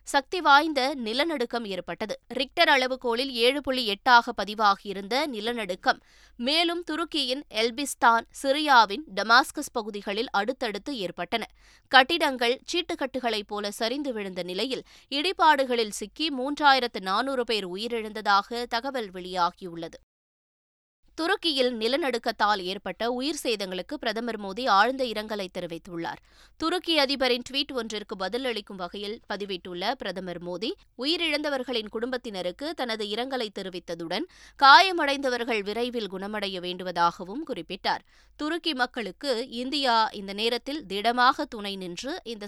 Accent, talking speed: native, 100 wpm